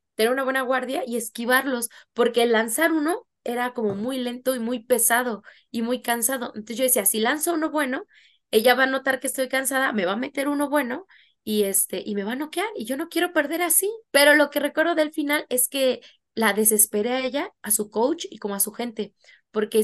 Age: 20-39